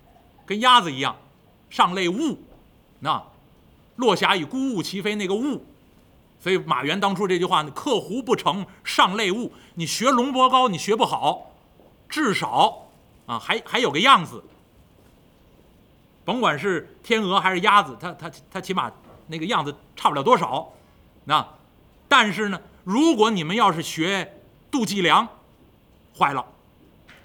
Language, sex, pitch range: Chinese, male, 160-230 Hz